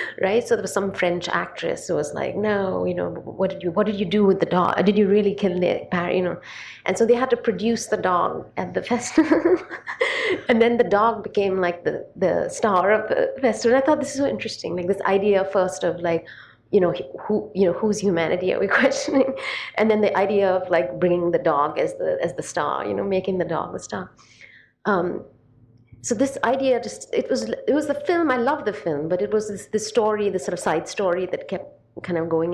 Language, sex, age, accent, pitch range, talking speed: English, female, 30-49, Indian, 160-215 Hz, 240 wpm